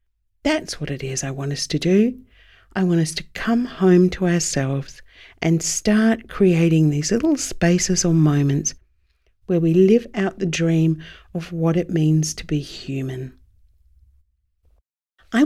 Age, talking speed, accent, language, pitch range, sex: 50-69, 150 wpm, Australian, English, 135-190 Hz, female